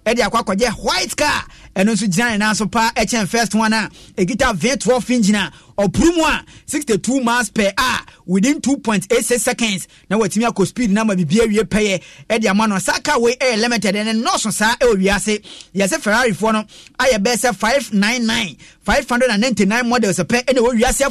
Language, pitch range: English, 200-245 Hz